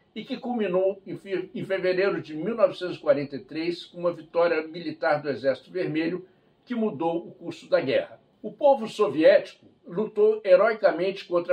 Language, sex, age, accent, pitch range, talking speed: Portuguese, male, 60-79, Brazilian, 170-220 Hz, 135 wpm